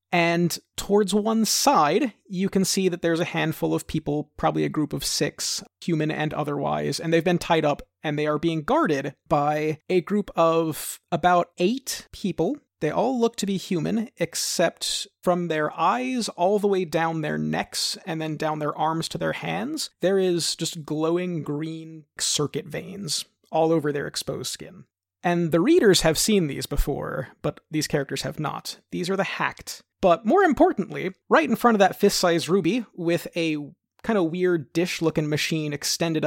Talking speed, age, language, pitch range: 180 wpm, 30-49, English, 155-190 Hz